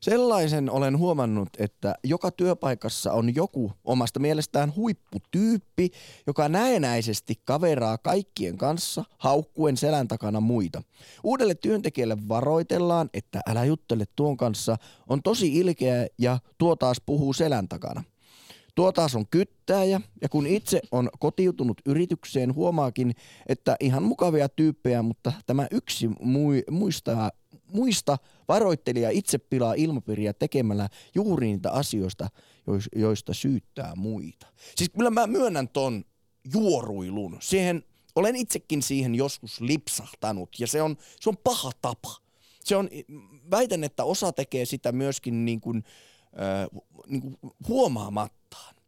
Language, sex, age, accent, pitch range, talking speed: Finnish, male, 20-39, native, 115-160 Hz, 125 wpm